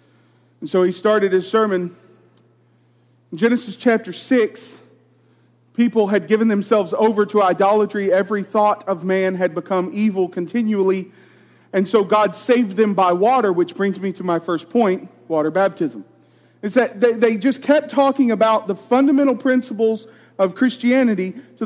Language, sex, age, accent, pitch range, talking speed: English, male, 40-59, American, 185-245 Hz, 150 wpm